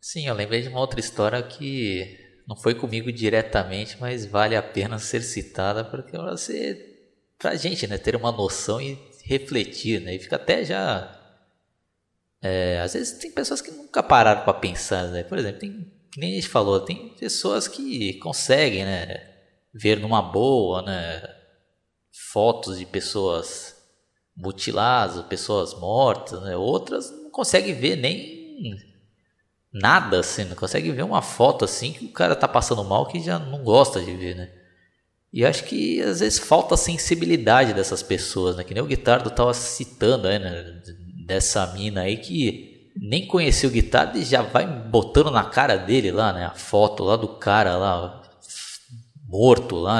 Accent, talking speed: Brazilian, 165 wpm